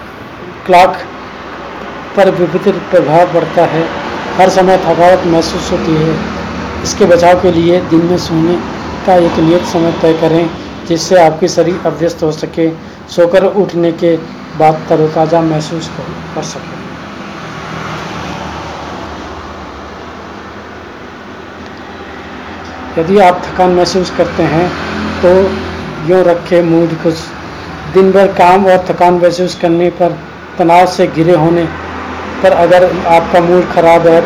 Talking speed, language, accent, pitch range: 120 wpm, Hindi, native, 165-180 Hz